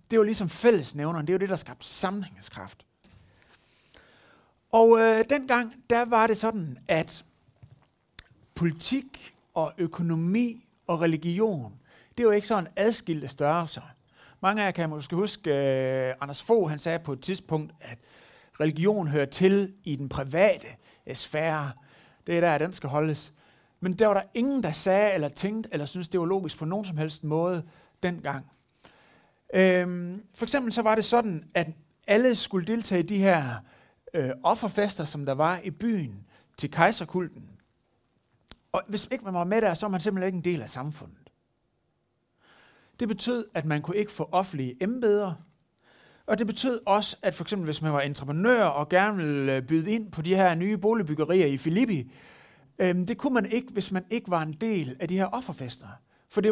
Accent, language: native, Danish